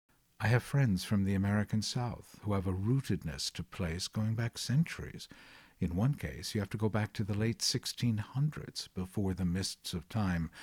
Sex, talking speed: male, 185 wpm